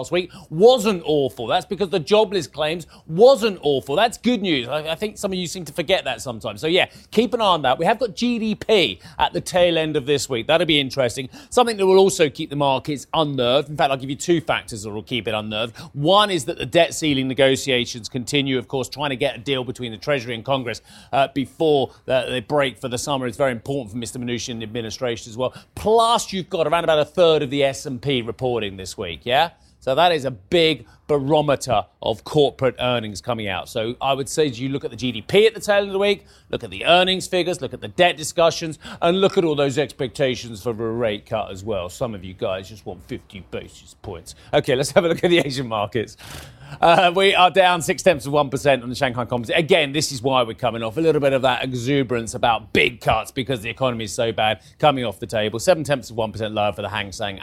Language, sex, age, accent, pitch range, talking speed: English, male, 30-49, British, 120-170 Hz, 240 wpm